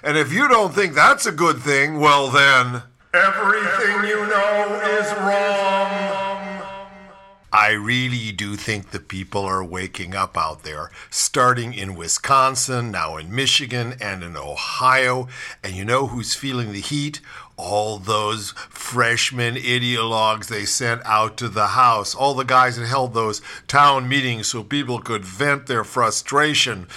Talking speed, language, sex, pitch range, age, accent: 150 wpm, English, male, 120-165 Hz, 50-69, American